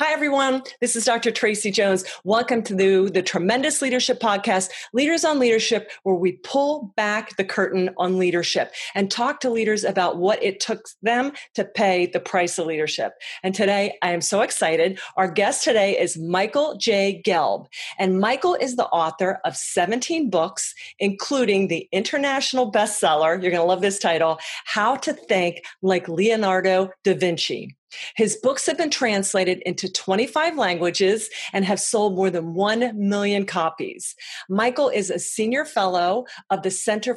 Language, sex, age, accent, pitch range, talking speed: English, female, 40-59, American, 185-235 Hz, 165 wpm